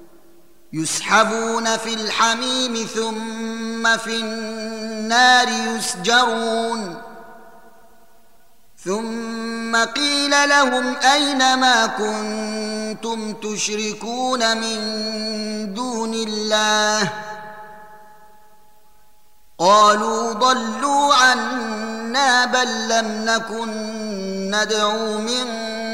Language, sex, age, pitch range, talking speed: Arabic, male, 30-49, 215-245 Hz, 60 wpm